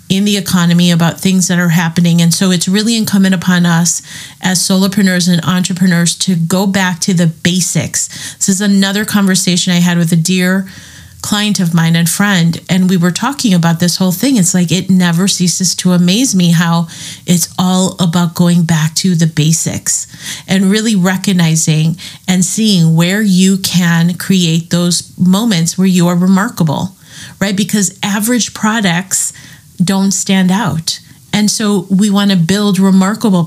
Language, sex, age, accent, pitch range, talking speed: English, female, 30-49, American, 170-195 Hz, 165 wpm